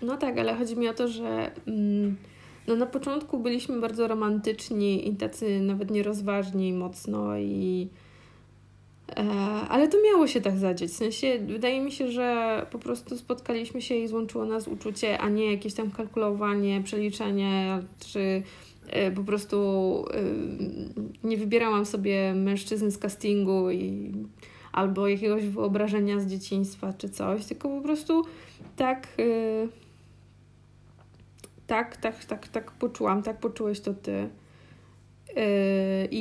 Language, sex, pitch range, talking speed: Polish, female, 190-235 Hz, 135 wpm